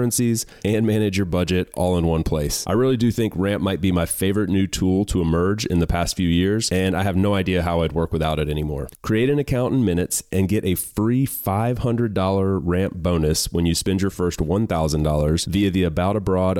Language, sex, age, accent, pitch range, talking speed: English, male, 30-49, American, 85-100 Hz, 215 wpm